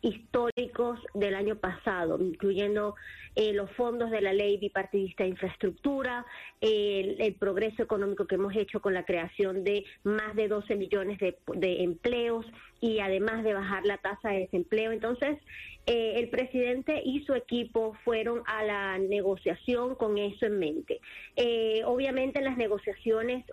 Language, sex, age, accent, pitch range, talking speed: English, female, 30-49, American, 205-240 Hz, 155 wpm